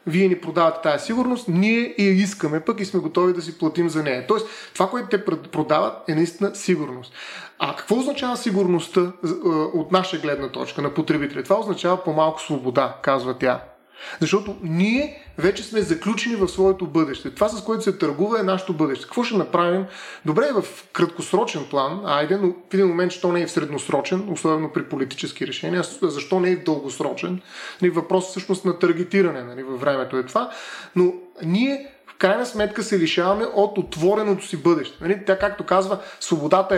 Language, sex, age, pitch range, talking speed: Bulgarian, male, 30-49, 165-200 Hz, 180 wpm